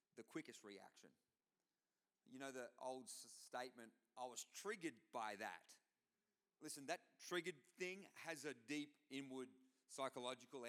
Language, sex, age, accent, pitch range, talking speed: English, male, 40-59, Australian, 130-170 Hz, 130 wpm